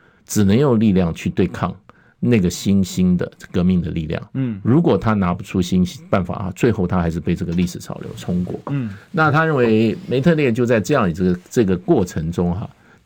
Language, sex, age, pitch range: Chinese, male, 50-69, 90-115 Hz